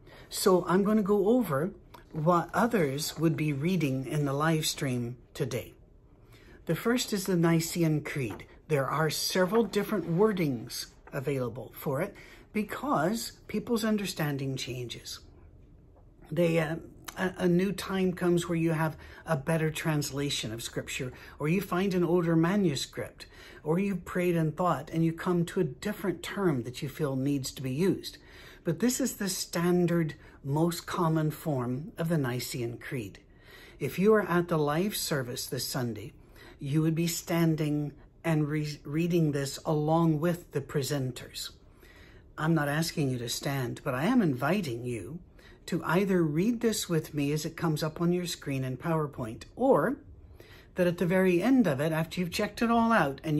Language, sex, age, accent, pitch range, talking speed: English, male, 60-79, American, 135-180 Hz, 165 wpm